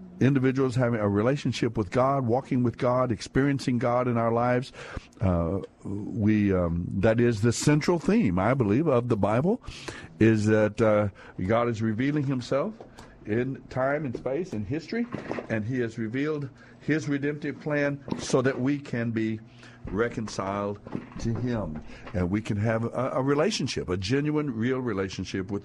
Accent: American